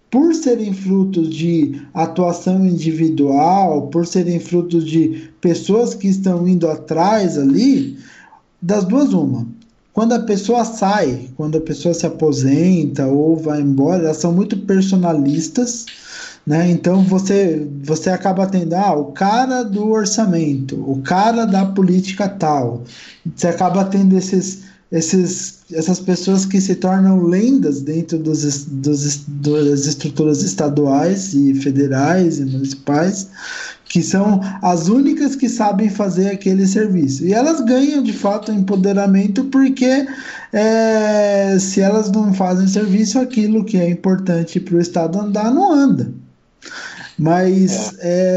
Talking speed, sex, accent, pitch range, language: 125 wpm, male, Brazilian, 160-210 Hz, Portuguese